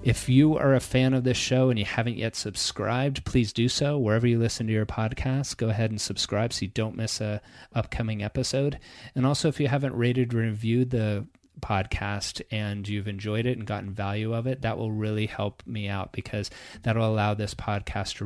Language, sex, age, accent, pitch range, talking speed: English, male, 30-49, American, 105-130 Hz, 215 wpm